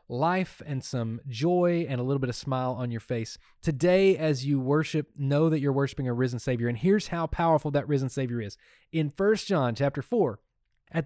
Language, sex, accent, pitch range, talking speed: English, male, American, 130-170 Hz, 205 wpm